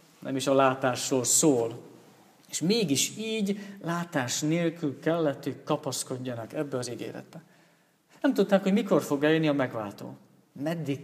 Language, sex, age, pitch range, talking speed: Hungarian, male, 50-69, 140-175 Hz, 135 wpm